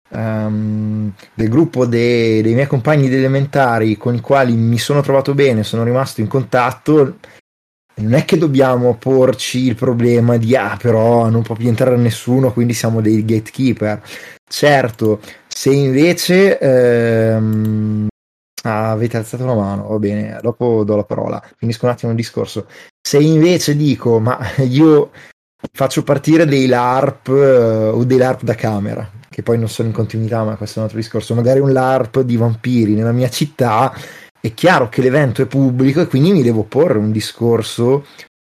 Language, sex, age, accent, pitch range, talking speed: Italian, male, 20-39, native, 110-135 Hz, 165 wpm